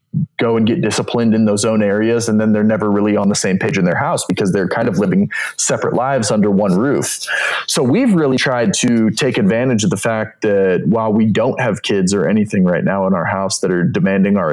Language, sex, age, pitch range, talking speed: English, male, 20-39, 105-145 Hz, 235 wpm